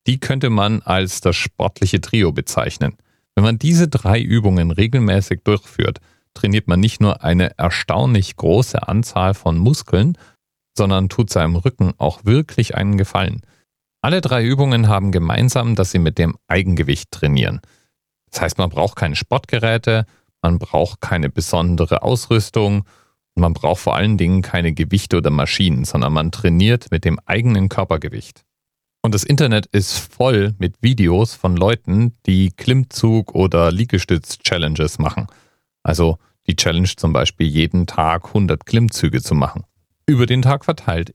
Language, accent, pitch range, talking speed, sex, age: German, German, 85-115 Hz, 145 wpm, male, 40-59